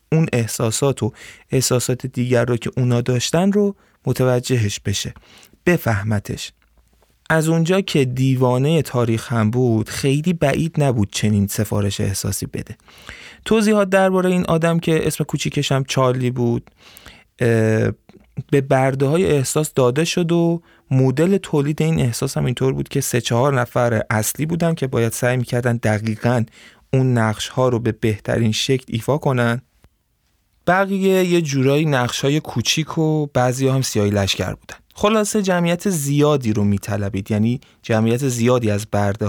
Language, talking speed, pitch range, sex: Persian, 135 wpm, 110-150 Hz, male